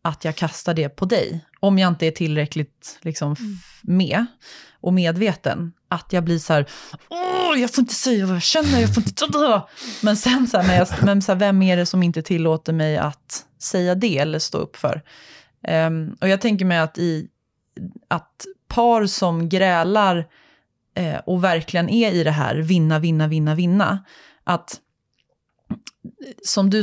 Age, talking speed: 20-39, 180 wpm